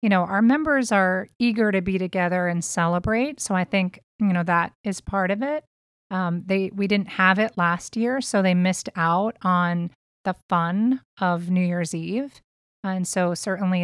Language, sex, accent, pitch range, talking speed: English, female, American, 180-220 Hz, 185 wpm